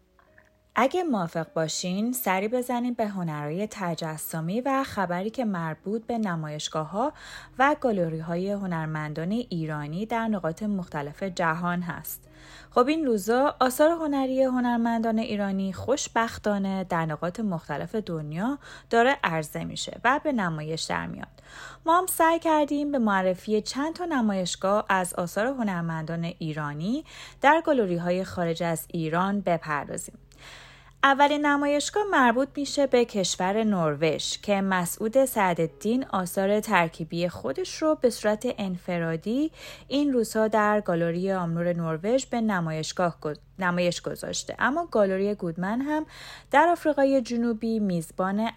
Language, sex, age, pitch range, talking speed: Persian, female, 30-49, 170-245 Hz, 125 wpm